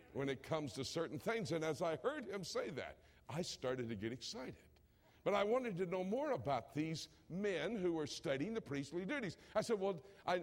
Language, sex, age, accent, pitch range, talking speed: English, male, 60-79, American, 140-200 Hz, 215 wpm